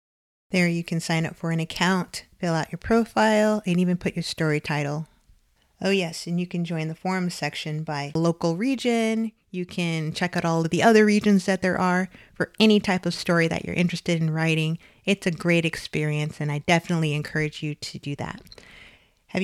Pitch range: 160-195 Hz